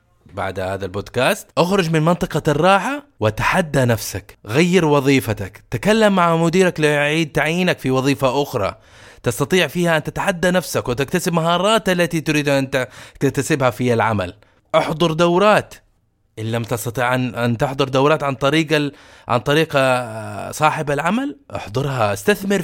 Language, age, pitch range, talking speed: Arabic, 20-39, 120-170 Hz, 130 wpm